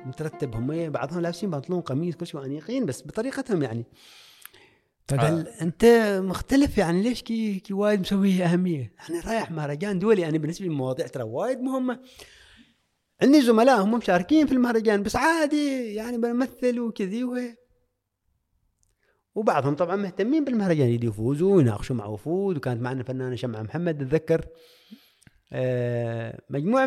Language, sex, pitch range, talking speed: Arabic, male, 125-200 Hz, 135 wpm